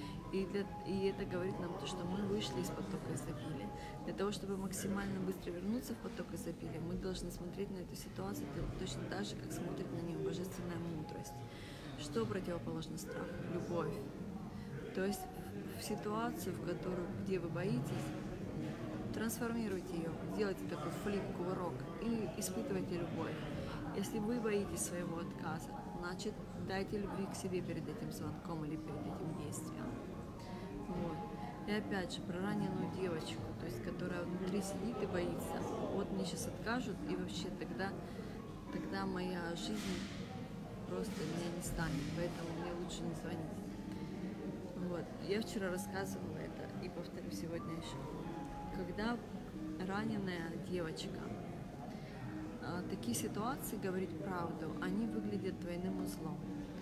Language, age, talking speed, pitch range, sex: Russian, 20-39, 135 wpm, 170-200 Hz, female